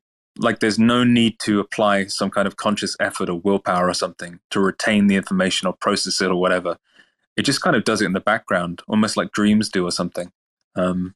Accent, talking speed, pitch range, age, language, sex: British, 215 wpm, 95-105 Hz, 20-39, English, male